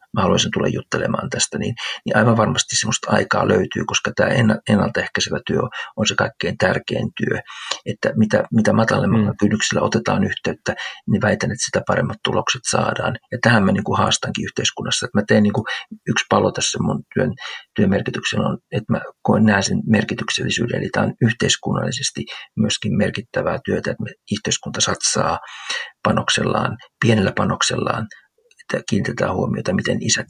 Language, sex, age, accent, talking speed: Finnish, male, 50-69, native, 145 wpm